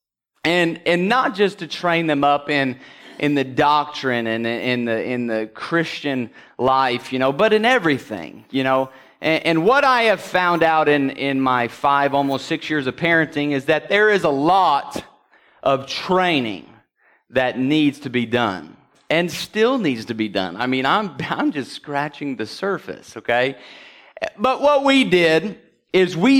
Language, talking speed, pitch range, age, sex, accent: English, 175 wpm, 125-170 Hz, 30-49, male, American